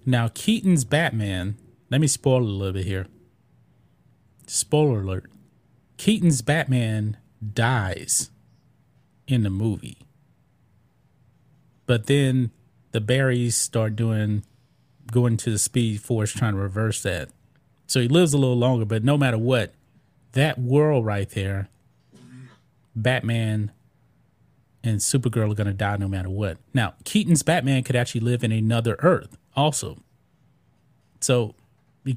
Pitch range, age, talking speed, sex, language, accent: 110-135 Hz, 30-49, 130 wpm, male, English, American